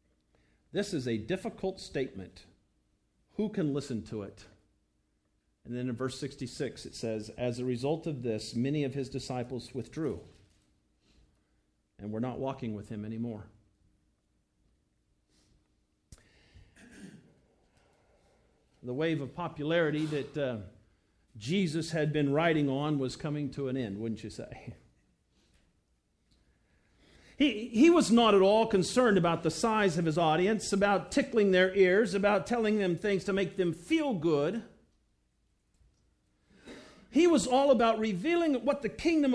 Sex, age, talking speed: male, 50-69, 135 wpm